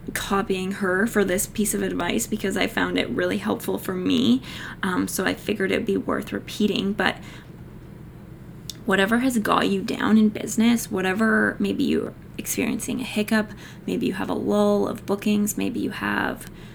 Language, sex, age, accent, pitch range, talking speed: English, female, 20-39, American, 185-225 Hz, 170 wpm